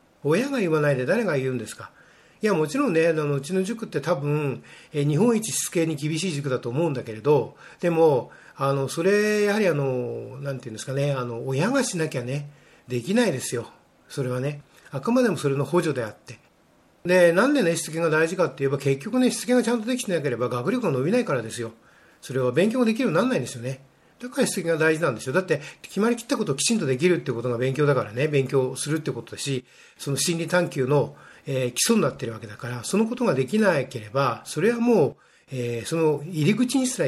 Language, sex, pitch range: Japanese, male, 130-190 Hz